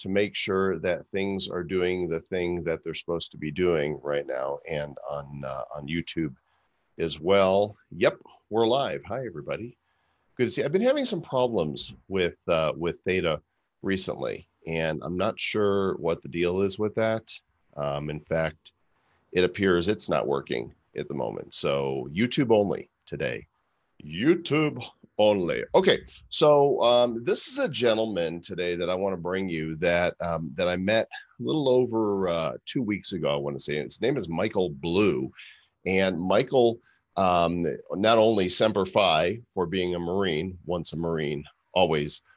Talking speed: 170 wpm